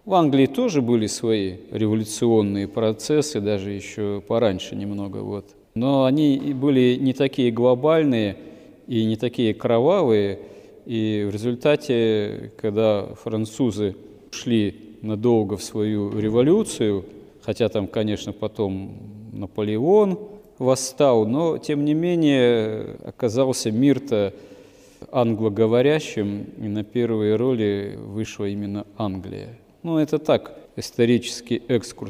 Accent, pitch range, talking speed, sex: native, 105-125 Hz, 105 wpm, male